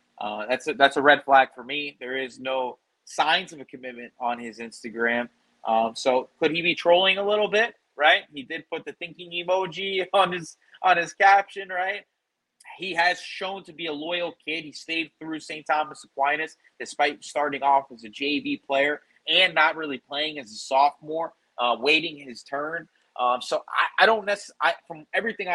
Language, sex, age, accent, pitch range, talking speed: English, male, 30-49, American, 125-170 Hz, 190 wpm